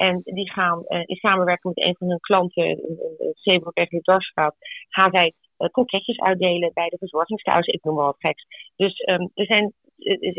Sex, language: female, English